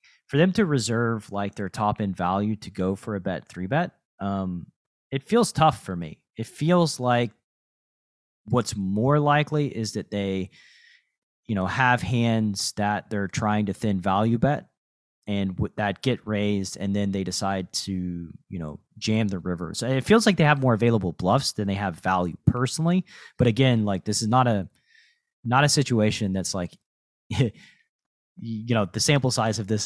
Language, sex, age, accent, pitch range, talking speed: English, male, 30-49, American, 95-125 Hz, 180 wpm